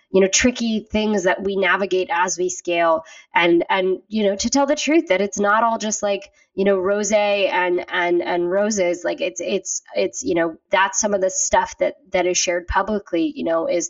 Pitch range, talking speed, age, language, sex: 175-245 Hz, 215 wpm, 20-39, English, female